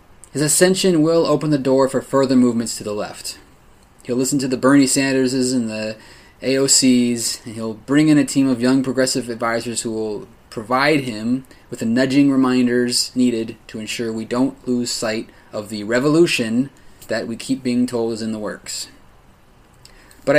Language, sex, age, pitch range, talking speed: English, male, 20-39, 115-135 Hz, 175 wpm